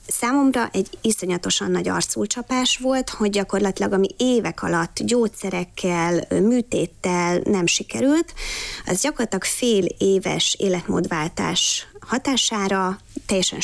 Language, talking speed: Hungarian, 95 wpm